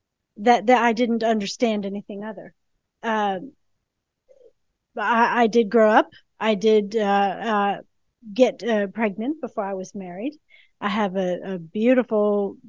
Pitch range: 195-245 Hz